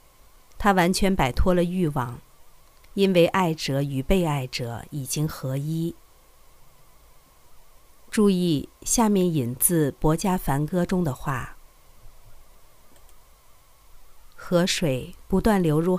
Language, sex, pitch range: Chinese, female, 145-190 Hz